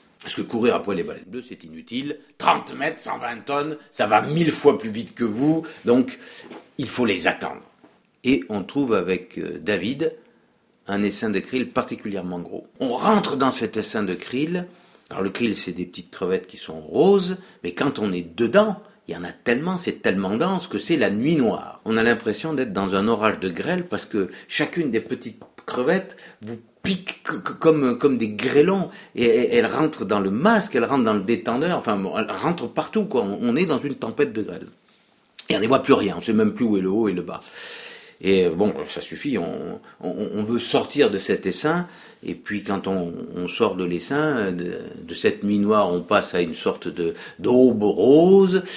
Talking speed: 205 wpm